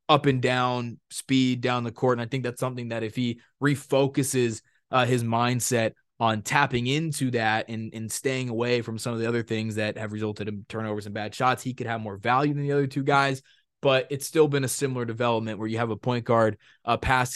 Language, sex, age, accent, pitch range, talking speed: English, male, 20-39, American, 115-145 Hz, 230 wpm